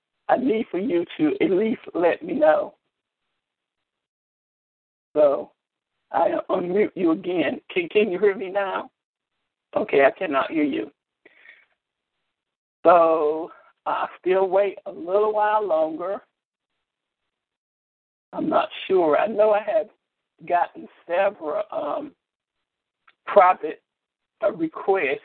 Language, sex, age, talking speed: English, male, 60-79, 110 wpm